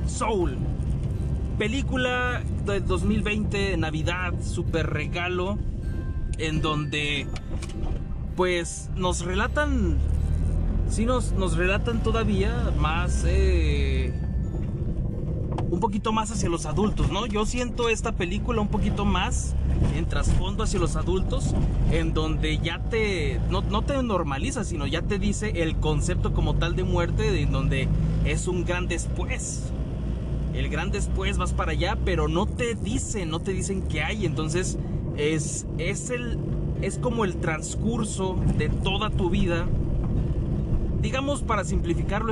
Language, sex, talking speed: Spanish, male, 130 wpm